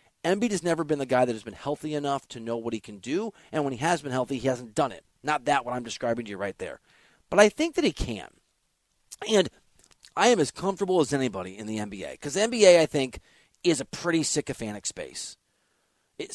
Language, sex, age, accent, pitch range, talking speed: English, male, 30-49, American, 105-145 Hz, 230 wpm